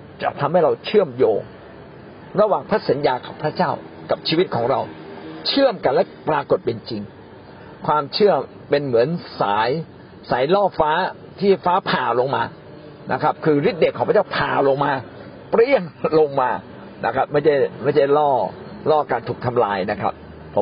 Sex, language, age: male, Thai, 60-79